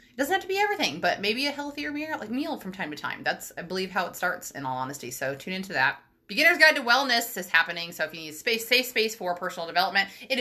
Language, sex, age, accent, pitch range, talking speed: English, female, 20-39, American, 165-220 Hz, 270 wpm